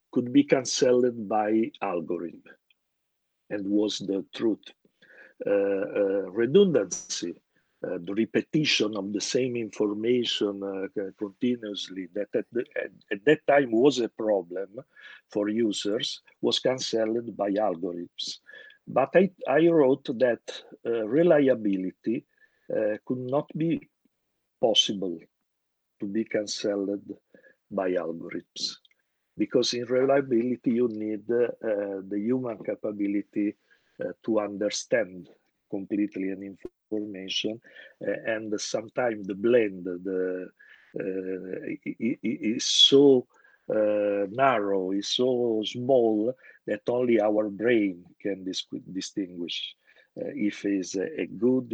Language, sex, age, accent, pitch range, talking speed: English, male, 50-69, Italian, 100-120 Hz, 105 wpm